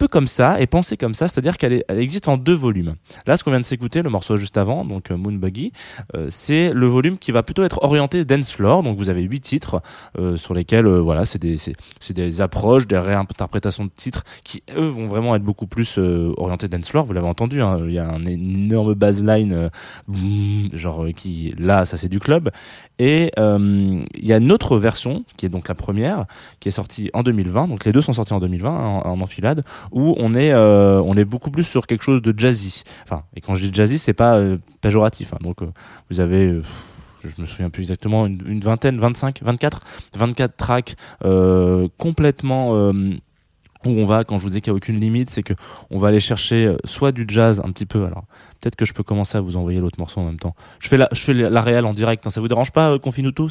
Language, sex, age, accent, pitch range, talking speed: French, male, 20-39, French, 95-125 Hz, 240 wpm